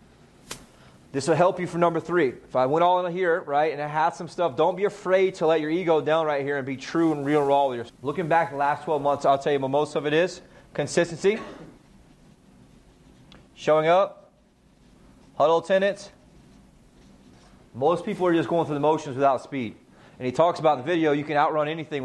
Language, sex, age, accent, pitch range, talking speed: English, male, 30-49, American, 135-170 Hz, 205 wpm